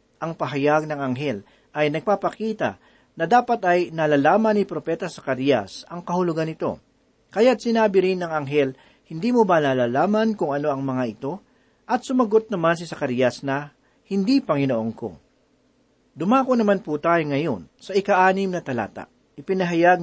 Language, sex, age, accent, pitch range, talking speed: Filipino, male, 40-59, native, 145-205 Hz, 145 wpm